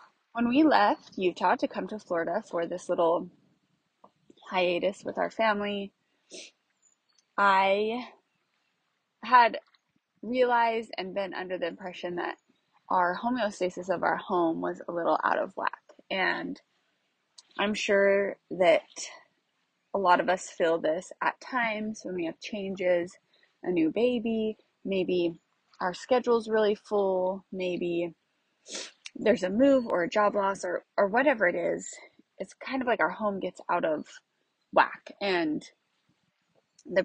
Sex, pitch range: female, 180-230 Hz